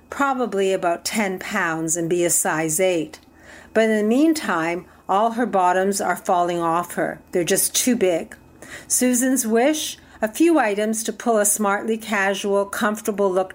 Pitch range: 185-230 Hz